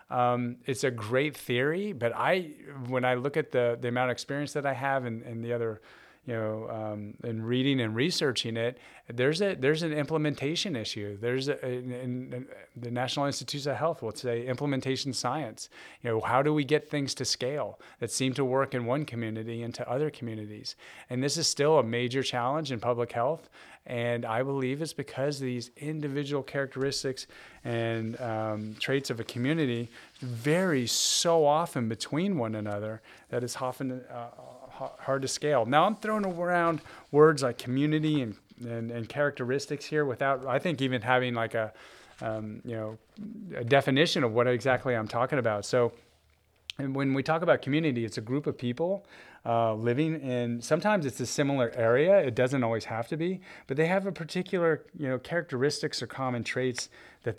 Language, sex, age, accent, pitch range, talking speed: English, male, 30-49, American, 115-145 Hz, 180 wpm